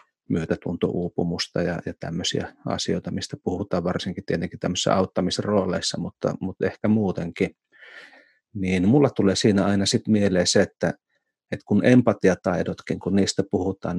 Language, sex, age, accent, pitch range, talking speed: Finnish, male, 30-49, native, 90-100 Hz, 130 wpm